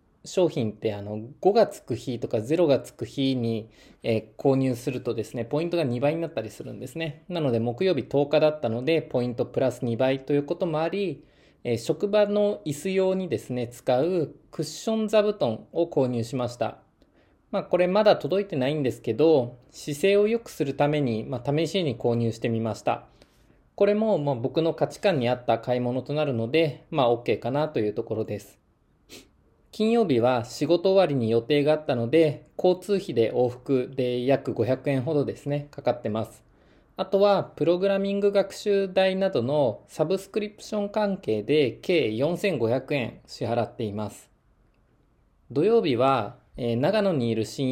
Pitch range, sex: 120-175 Hz, male